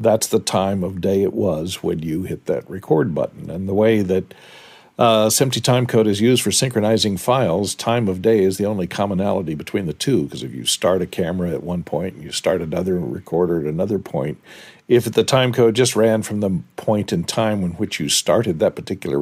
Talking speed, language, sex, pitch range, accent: 210 wpm, English, male, 95-120 Hz, American